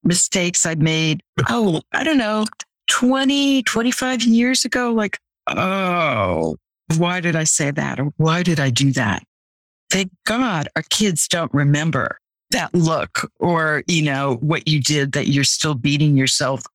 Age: 60-79